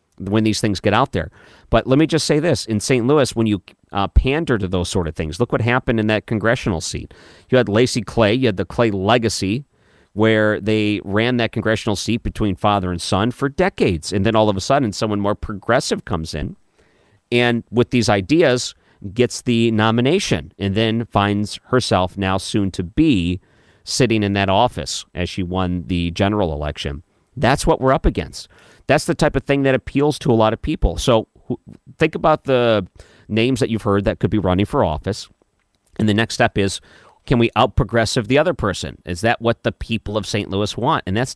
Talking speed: 205 wpm